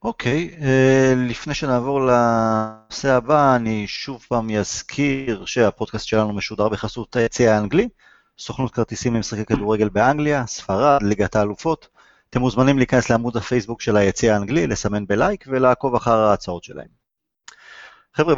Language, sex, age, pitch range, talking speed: Hebrew, male, 30-49, 105-130 Hz, 130 wpm